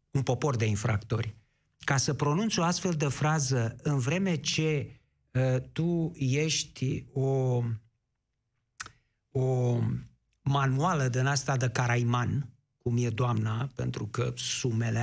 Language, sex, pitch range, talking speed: Romanian, male, 115-140 Hz, 120 wpm